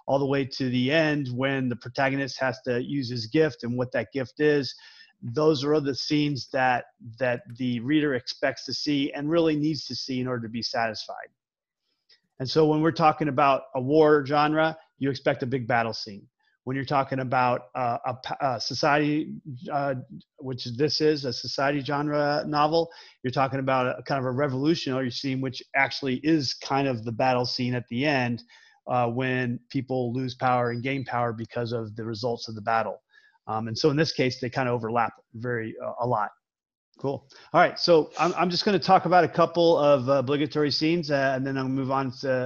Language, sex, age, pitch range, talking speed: English, male, 30-49, 125-150 Hz, 205 wpm